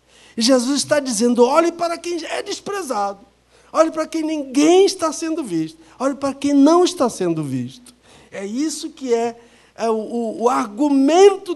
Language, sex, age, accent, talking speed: Portuguese, male, 60-79, Brazilian, 160 wpm